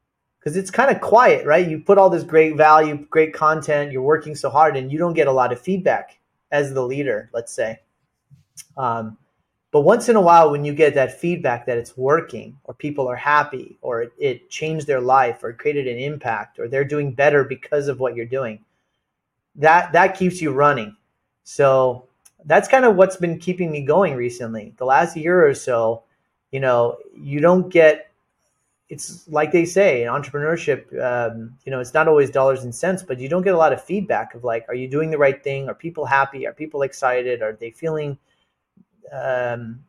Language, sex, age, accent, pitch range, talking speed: English, male, 30-49, American, 130-160 Hz, 200 wpm